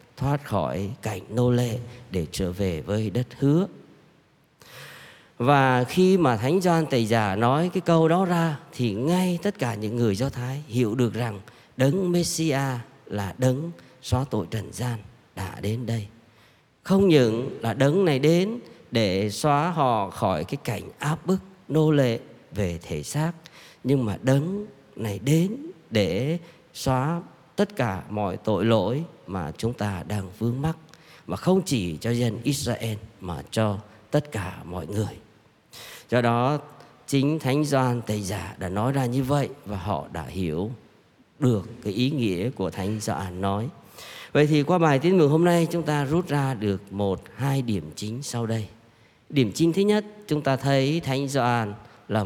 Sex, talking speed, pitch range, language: male, 170 wpm, 105-150 Hz, Vietnamese